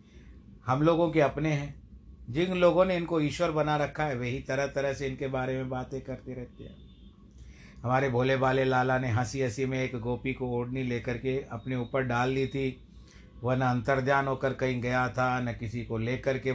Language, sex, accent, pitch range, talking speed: Hindi, male, native, 115-130 Hz, 195 wpm